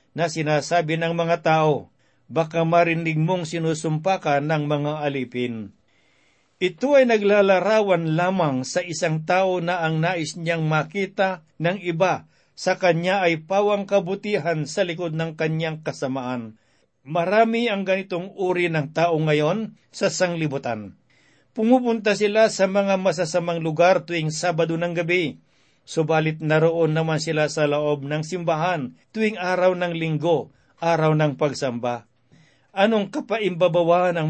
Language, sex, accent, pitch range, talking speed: Filipino, male, native, 155-185 Hz, 130 wpm